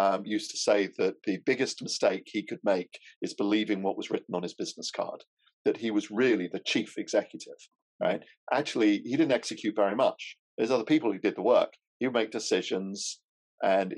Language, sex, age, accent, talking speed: English, male, 50-69, British, 200 wpm